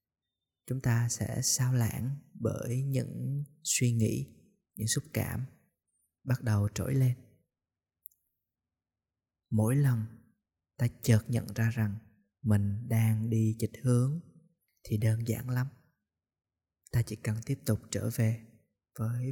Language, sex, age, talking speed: Vietnamese, male, 20-39, 125 wpm